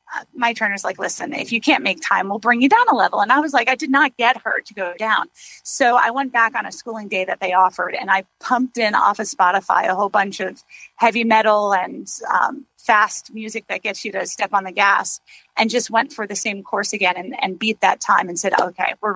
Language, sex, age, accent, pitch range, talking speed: English, female, 30-49, American, 205-270 Hz, 250 wpm